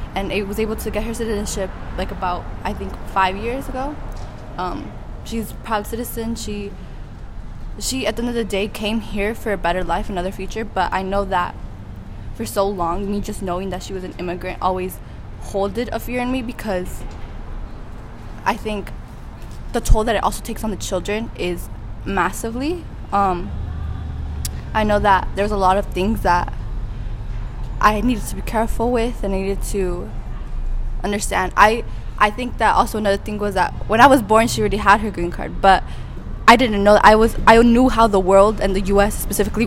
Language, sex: English, female